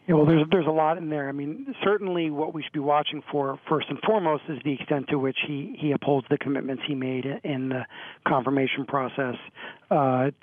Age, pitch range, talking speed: 40-59, 130-150 Hz, 215 wpm